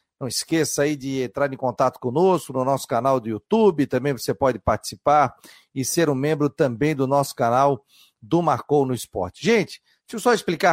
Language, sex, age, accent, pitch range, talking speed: Portuguese, male, 40-59, Brazilian, 135-175 Hz, 190 wpm